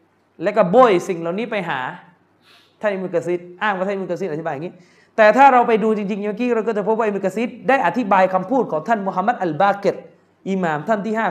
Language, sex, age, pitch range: Thai, male, 20-39, 180-235 Hz